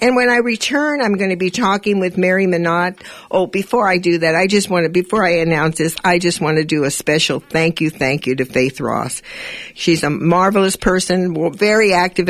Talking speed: 220 wpm